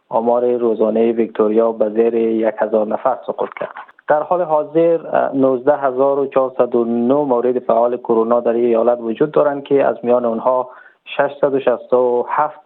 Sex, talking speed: male, 120 wpm